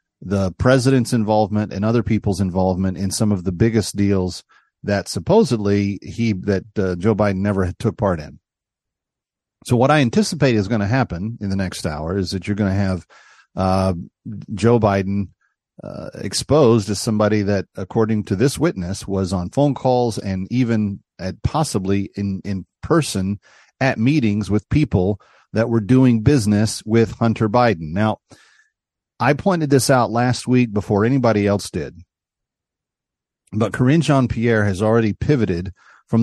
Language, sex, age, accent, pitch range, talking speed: English, male, 40-59, American, 100-130 Hz, 155 wpm